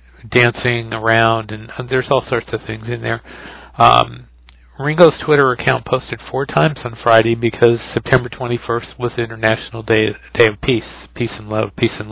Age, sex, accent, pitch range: 50-69, male, American, 115-130 Hz